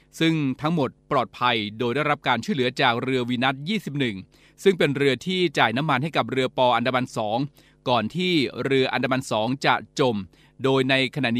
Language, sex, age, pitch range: Thai, male, 20-39, 125-150 Hz